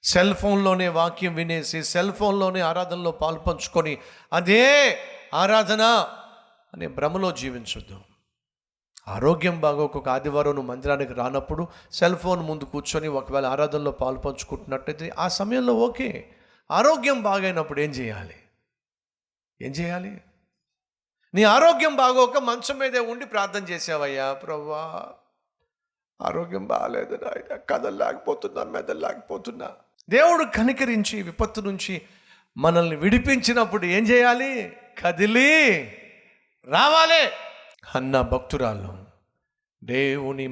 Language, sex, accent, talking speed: Telugu, male, native, 95 wpm